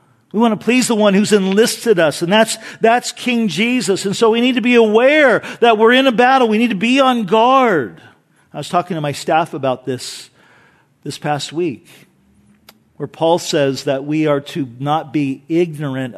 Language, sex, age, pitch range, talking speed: English, male, 50-69, 170-230 Hz, 195 wpm